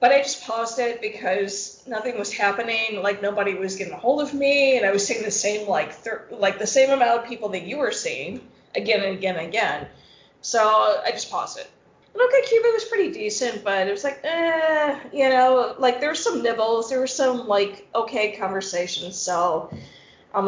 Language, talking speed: English, 205 wpm